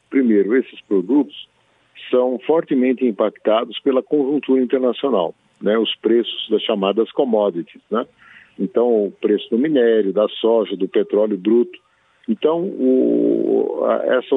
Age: 50-69